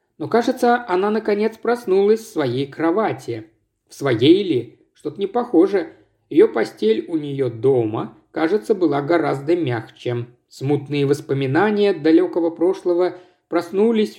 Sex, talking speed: male, 120 wpm